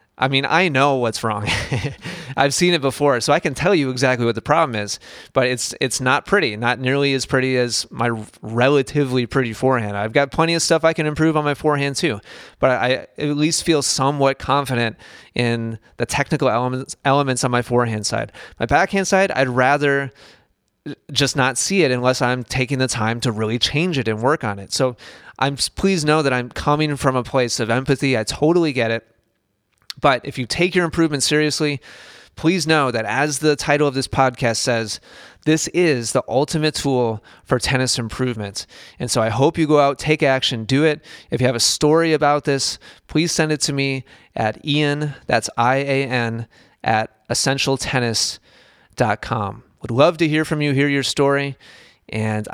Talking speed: 190 wpm